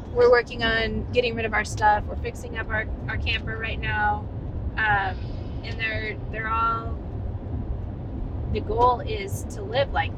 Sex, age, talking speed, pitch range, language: female, 20-39, 160 wpm, 95-110 Hz, English